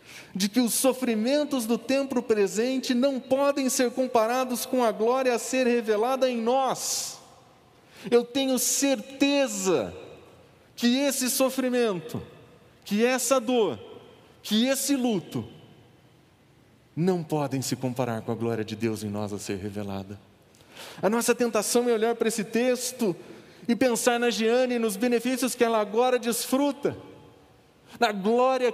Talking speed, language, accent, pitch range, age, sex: 140 wpm, Portuguese, Brazilian, 185-245 Hz, 40-59, male